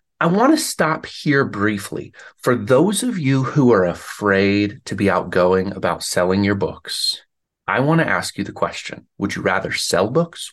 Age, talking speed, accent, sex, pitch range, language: 30-49, 170 wpm, American, male, 95-130 Hz, English